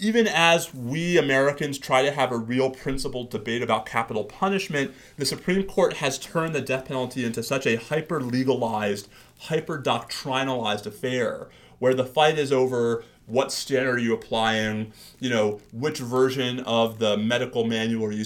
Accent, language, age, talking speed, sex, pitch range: American, English, 30-49, 155 wpm, male, 115-140 Hz